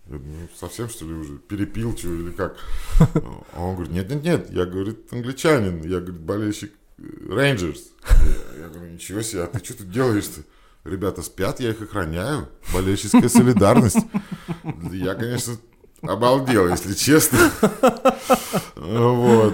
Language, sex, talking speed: Russian, male, 130 wpm